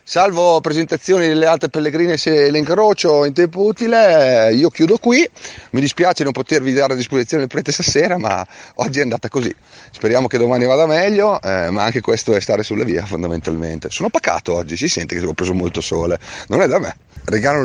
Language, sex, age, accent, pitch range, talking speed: Italian, male, 30-49, native, 90-145 Hz, 200 wpm